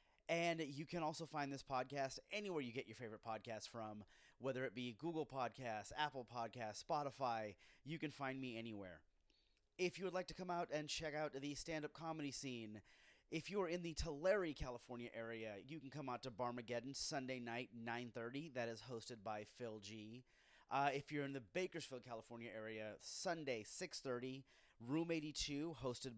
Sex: male